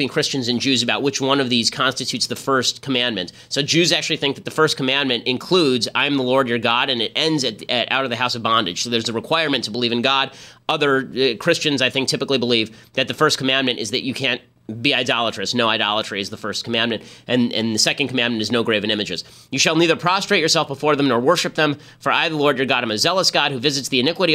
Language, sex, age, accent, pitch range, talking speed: English, male, 30-49, American, 115-145 Hz, 250 wpm